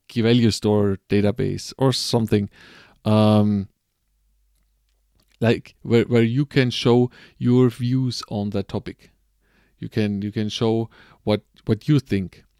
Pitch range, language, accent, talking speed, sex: 100-120 Hz, English, German, 125 wpm, male